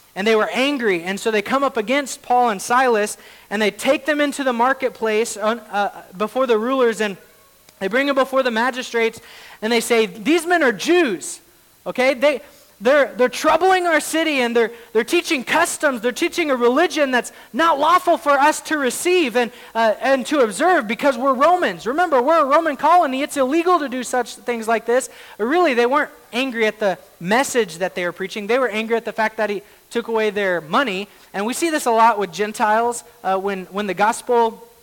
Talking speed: 205 wpm